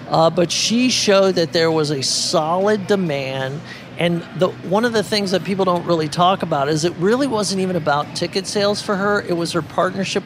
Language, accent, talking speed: English, American, 205 wpm